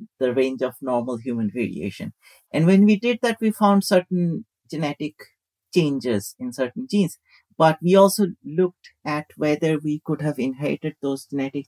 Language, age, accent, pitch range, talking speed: English, 50-69, Indian, 125-155 Hz, 160 wpm